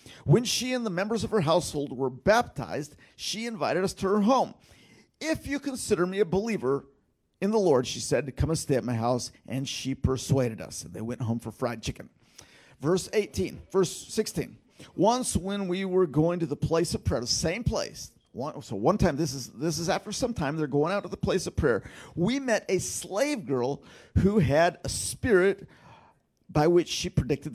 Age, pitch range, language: 50-69, 135-190 Hz, English